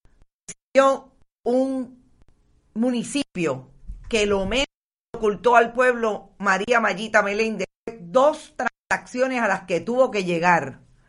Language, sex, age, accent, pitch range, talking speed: Spanish, female, 40-59, American, 180-235 Hz, 105 wpm